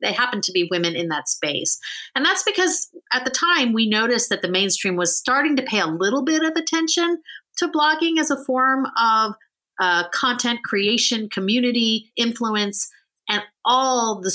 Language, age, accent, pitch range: English, 30-49, American, 175-250 Hz